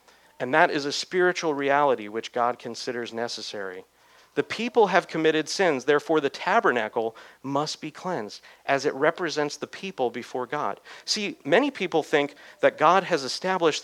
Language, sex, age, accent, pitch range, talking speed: English, male, 40-59, American, 125-160 Hz, 155 wpm